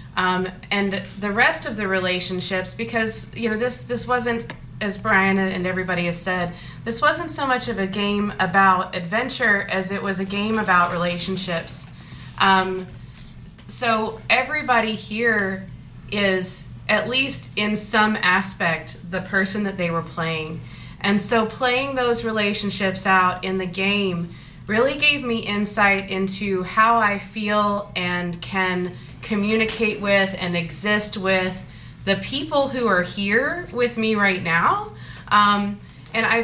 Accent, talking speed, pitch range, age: American, 145 wpm, 185-220 Hz, 20-39